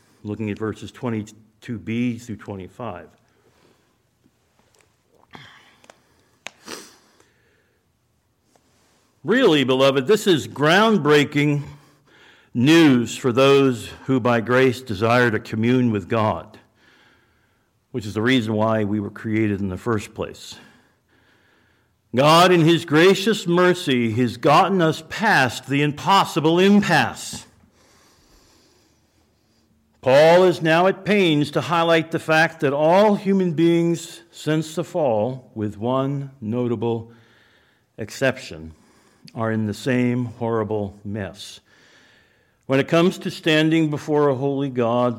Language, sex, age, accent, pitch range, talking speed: English, male, 60-79, American, 115-150 Hz, 110 wpm